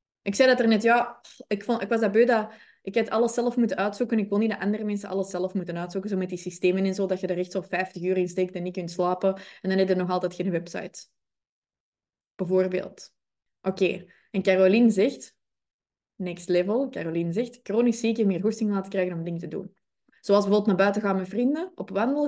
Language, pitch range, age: Dutch, 185-225 Hz, 20-39